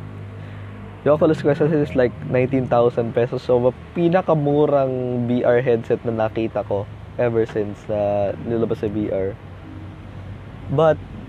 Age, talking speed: 20-39, 115 wpm